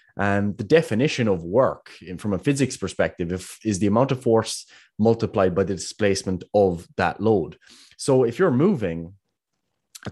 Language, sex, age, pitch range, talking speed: English, male, 20-39, 95-120 Hz, 155 wpm